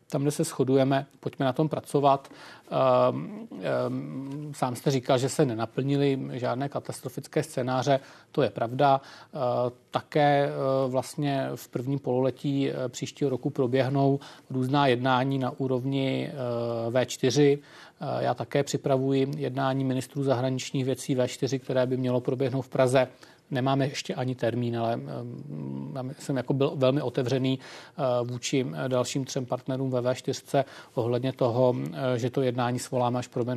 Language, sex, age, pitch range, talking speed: Czech, male, 40-59, 125-140 Hz, 130 wpm